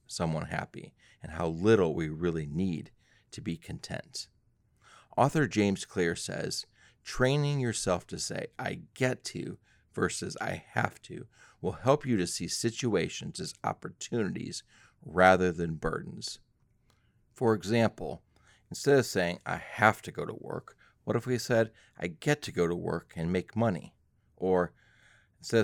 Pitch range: 85-120 Hz